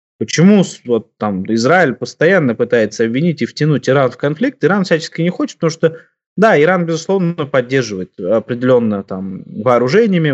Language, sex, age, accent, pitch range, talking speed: Russian, male, 20-39, native, 120-170 Hz, 145 wpm